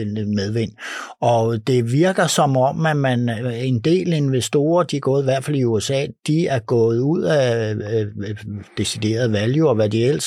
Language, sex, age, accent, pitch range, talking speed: Danish, male, 60-79, native, 110-135 Hz, 180 wpm